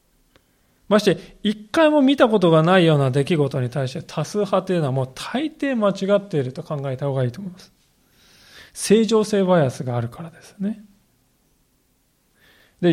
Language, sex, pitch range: Japanese, male, 140-205 Hz